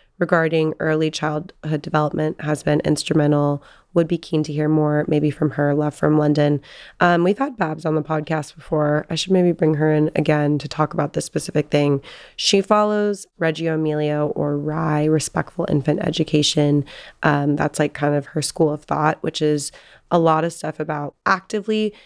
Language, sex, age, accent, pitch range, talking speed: English, female, 20-39, American, 150-165 Hz, 180 wpm